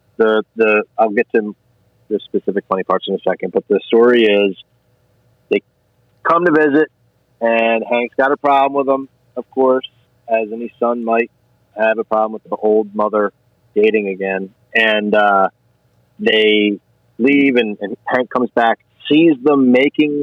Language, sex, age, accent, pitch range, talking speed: English, male, 30-49, American, 105-125 Hz, 160 wpm